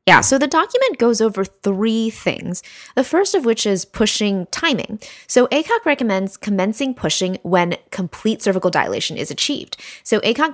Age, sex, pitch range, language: 20-39, female, 180-245 Hz, English